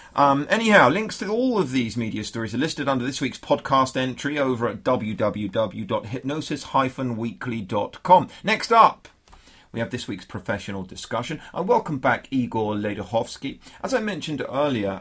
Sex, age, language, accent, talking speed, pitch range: male, 40-59, English, British, 150 wpm, 105-145 Hz